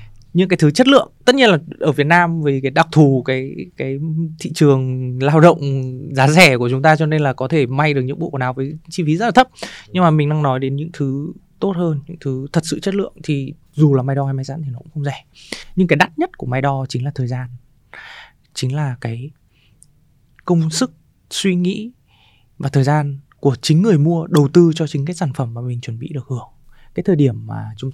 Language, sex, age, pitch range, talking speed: Vietnamese, male, 20-39, 125-155 Hz, 245 wpm